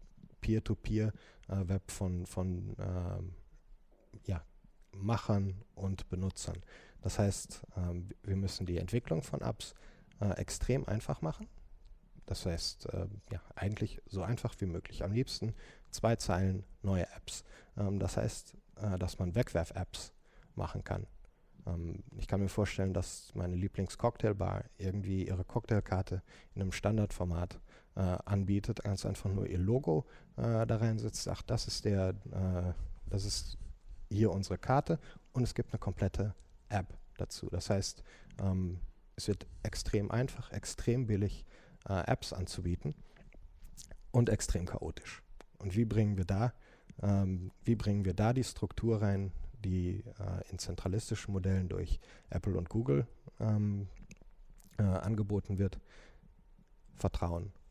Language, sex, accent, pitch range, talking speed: German, male, German, 90-110 Hz, 135 wpm